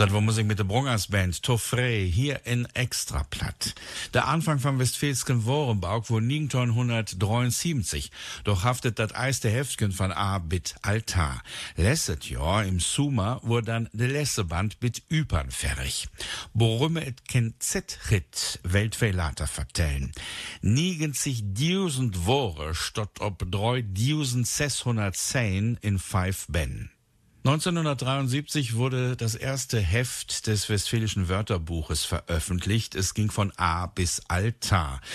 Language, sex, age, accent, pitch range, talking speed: German, male, 60-79, German, 100-125 Hz, 120 wpm